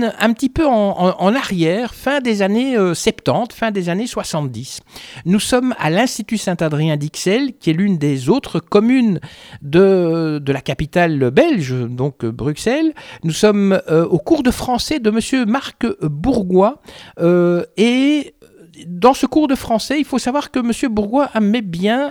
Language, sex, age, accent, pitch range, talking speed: French, male, 60-79, French, 175-250 Hz, 165 wpm